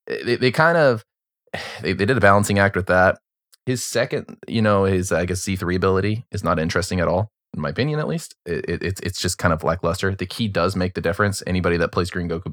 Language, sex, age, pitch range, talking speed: English, male, 20-39, 90-100 Hz, 225 wpm